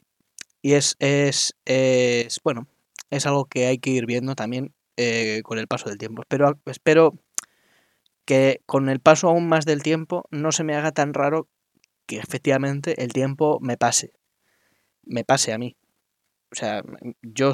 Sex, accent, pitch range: male, Spanish, 120-150 Hz